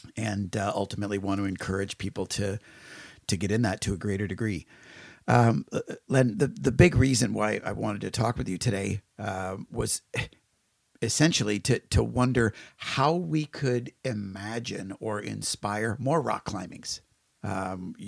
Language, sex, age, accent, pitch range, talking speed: English, male, 50-69, American, 105-135 Hz, 155 wpm